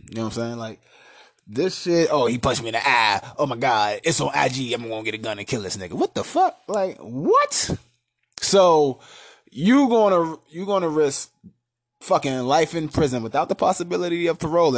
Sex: male